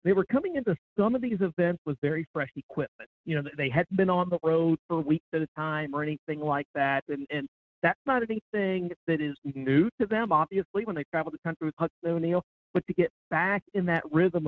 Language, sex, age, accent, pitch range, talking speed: English, male, 50-69, American, 150-180 Hz, 230 wpm